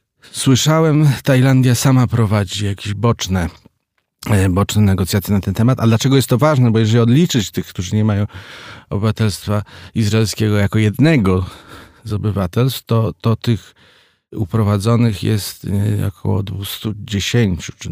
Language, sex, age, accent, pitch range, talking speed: Polish, male, 40-59, native, 100-115 Hz, 125 wpm